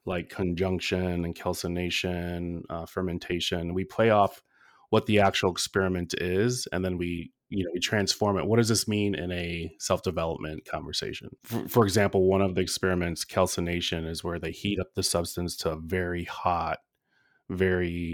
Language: English